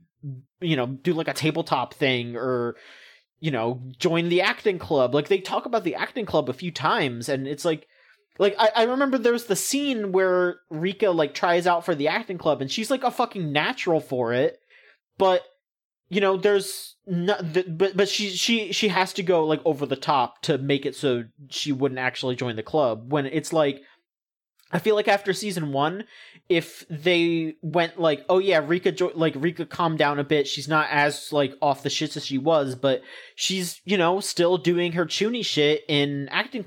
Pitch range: 145-195 Hz